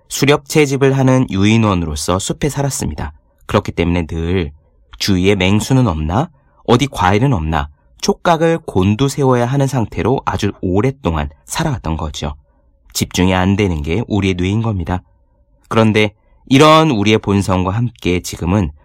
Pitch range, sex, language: 85-135 Hz, male, Korean